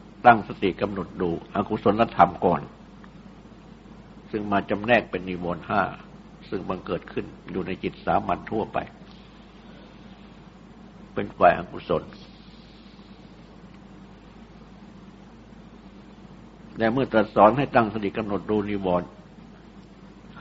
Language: Thai